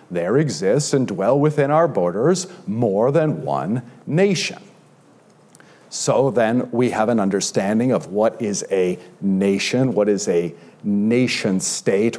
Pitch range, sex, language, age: 110-155 Hz, male, English, 50-69